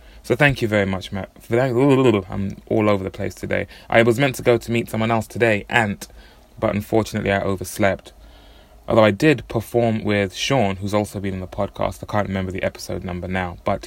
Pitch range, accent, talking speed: 100-115 Hz, British, 205 wpm